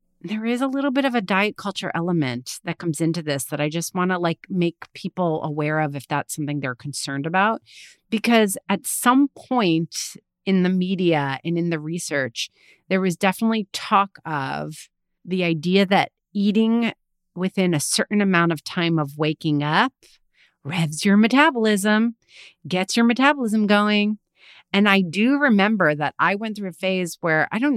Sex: female